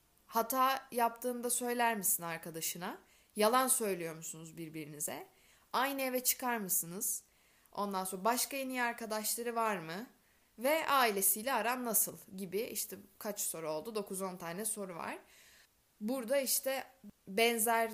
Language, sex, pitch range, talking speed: Turkish, female, 180-240 Hz, 120 wpm